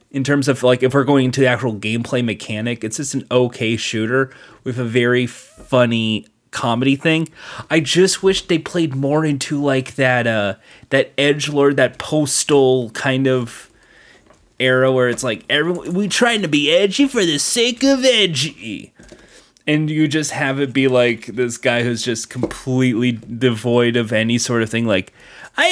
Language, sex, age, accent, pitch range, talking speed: English, male, 20-39, American, 120-160 Hz, 175 wpm